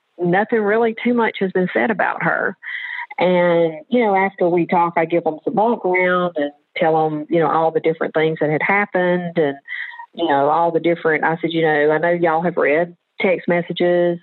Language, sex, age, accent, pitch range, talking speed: English, female, 50-69, American, 160-200 Hz, 210 wpm